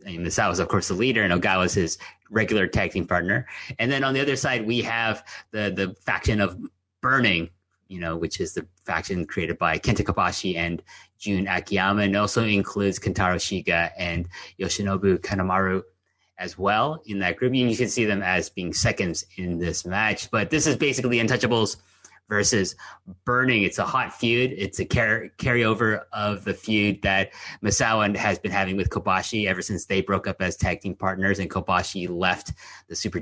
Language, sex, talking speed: English, male, 185 wpm